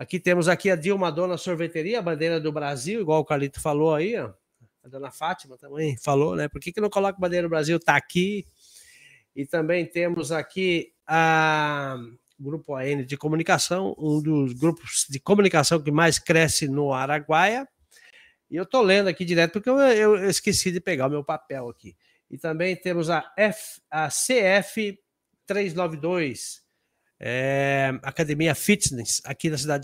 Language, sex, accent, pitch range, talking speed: Portuguese, male, Brazilian, 145-180 Hz, 165 wpm